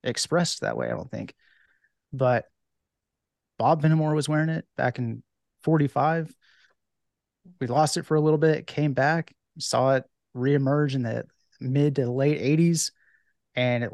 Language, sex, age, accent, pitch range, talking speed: English, male, 30-49, American, 135-160 Hz, 150 wpm